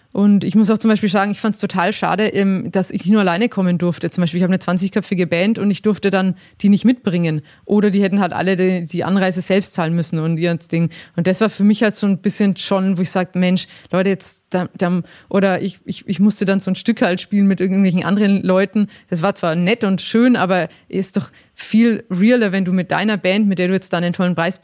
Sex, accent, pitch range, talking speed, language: female, German, 180-215 Hz, 245 wpm, German